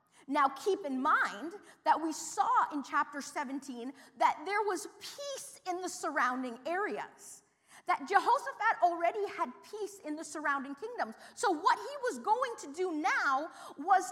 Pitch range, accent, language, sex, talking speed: 280-390 Hz, American, English, female, 155 wpm